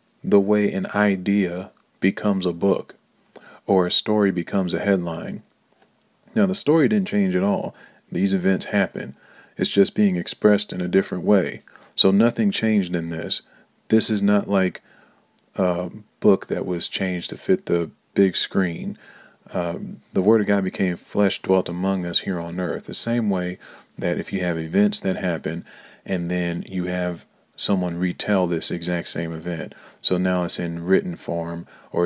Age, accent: 40-59, American